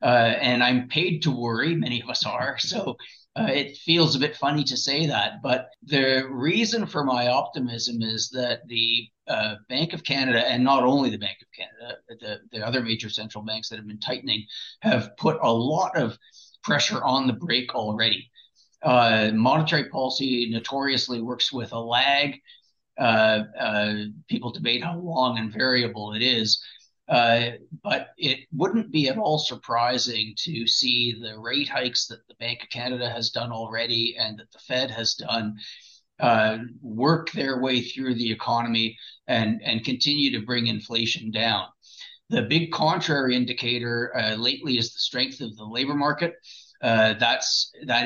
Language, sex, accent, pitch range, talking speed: English, male, American, 115-135 Hz, 170 wpm